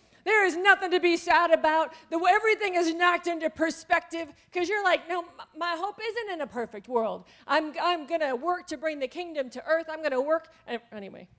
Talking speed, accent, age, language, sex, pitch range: 200 wpm, American, 40-59, English, female, 265-380 Hz